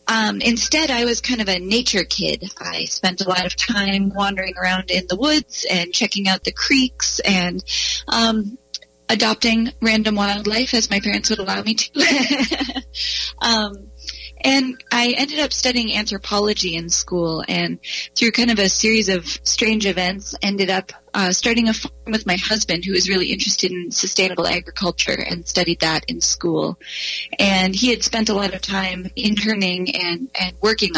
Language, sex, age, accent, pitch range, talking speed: English, female, 30-49, American, 185-225 Hz, 170 wpm